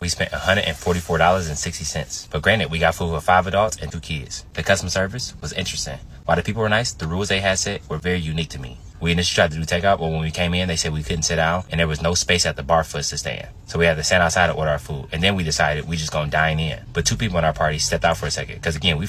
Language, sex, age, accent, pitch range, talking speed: English, male, 20-39, American, 75-90 Hz, 300 wpm